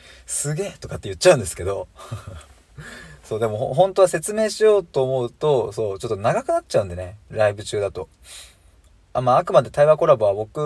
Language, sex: Japanese, male